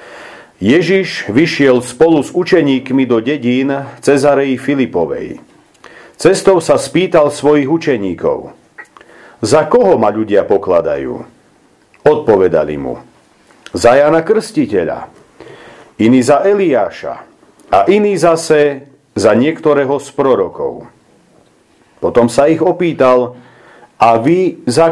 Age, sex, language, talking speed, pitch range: 50-69, male, Slovak, 100 wpm, 135-180 Hz